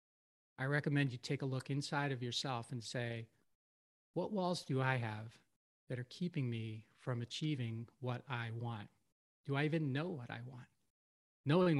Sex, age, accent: male, 40-59, American